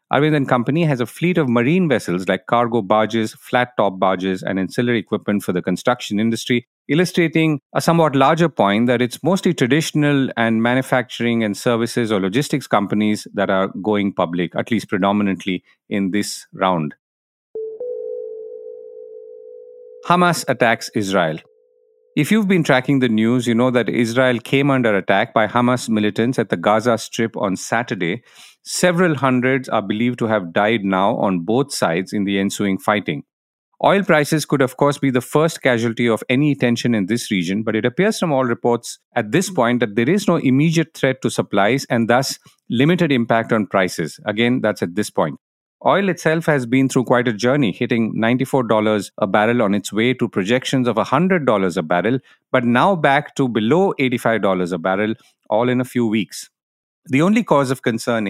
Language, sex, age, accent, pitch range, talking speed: English, male, 50-69, Indian, 105-145 Hz, 175 wpm